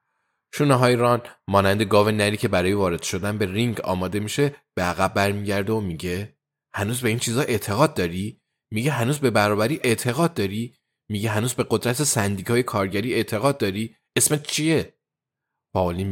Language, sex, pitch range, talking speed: Persian, male, 95-120 Hz, 155 wpm